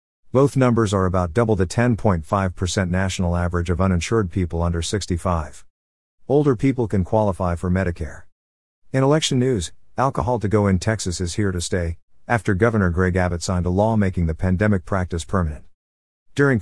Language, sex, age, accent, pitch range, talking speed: English, male, 50-69, American, 90-115 Hz, 165 wpm